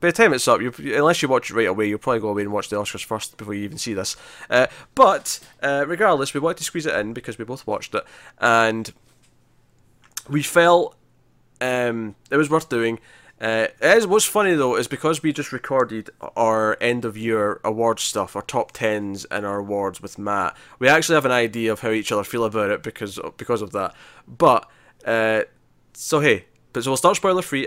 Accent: British